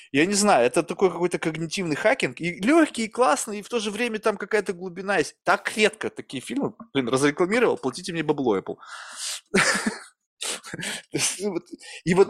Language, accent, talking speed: Russian, native, 150 wpm